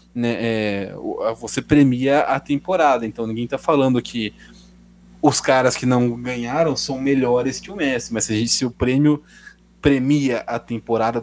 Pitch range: 115-145 Hz